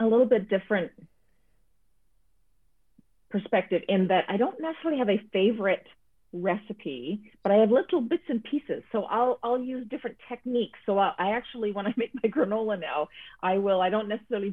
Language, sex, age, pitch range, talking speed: English, female, 40-59, 165-220 Hz, 175 wpm